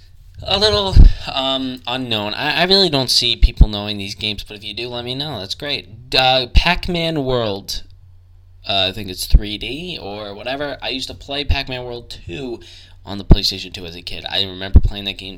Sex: male